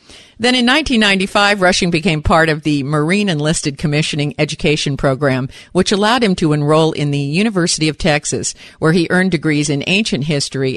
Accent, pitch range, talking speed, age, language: American, 140-185 Hz, 165 wpm, 50-69, English